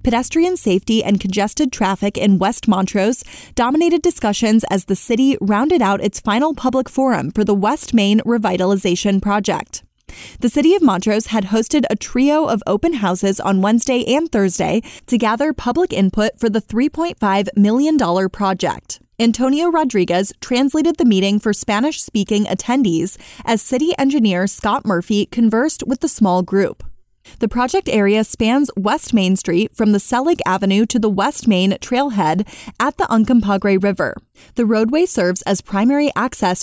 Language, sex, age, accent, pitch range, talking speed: English, female, 20-39, American, 200-265 Hz, 150 wpm